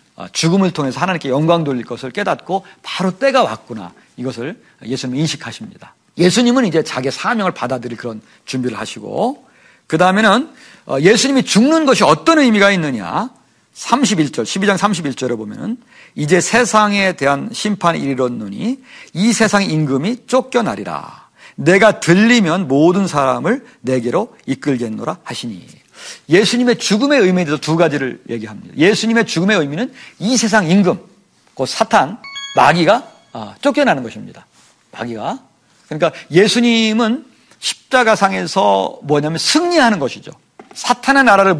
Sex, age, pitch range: male, 50-69, 150-240 Hz